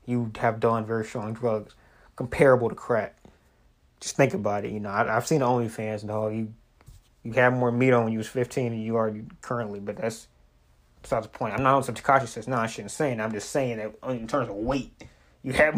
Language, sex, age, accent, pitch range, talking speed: English, male, 20-39, American, 115-130 Hz, 230 wpm